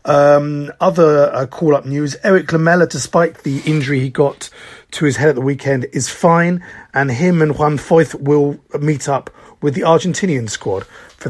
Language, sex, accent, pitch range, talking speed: English, male, British, 130-155 Hz, 175 wpm